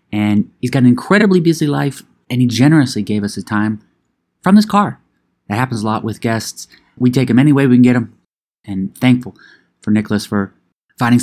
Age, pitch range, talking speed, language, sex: 30-49, 100-125 Hz, 205 wpm, English, male